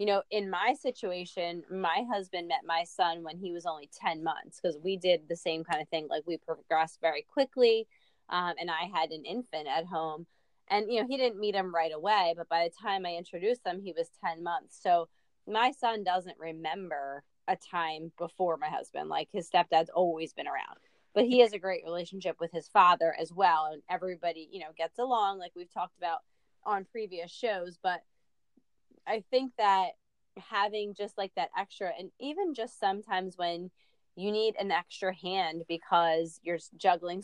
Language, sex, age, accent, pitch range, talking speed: English, female, 20-39, American, 165-205 Hz, 190 wpm